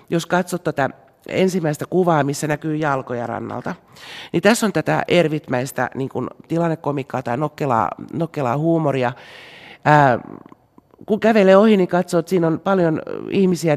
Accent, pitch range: native, 145-185 Hz